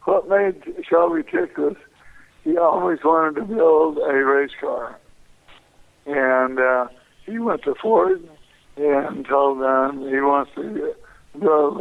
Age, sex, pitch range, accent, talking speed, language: 60-79, male, 135-205 Hz, American, 130 wpm, English